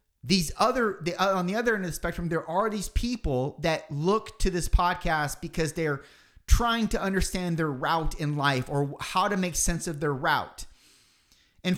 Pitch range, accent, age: 150-200 Hz, American, 30-49